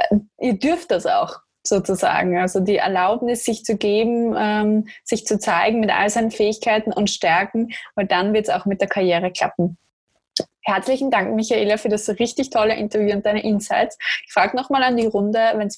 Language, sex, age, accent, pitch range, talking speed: German, female, 20-39, German, 195-230 Hz, 185 wpm